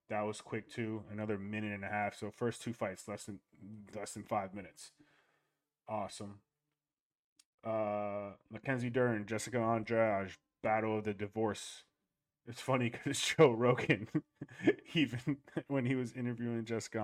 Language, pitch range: English, 105-130 Hz